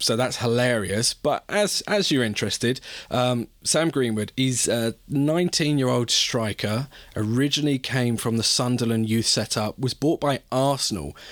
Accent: British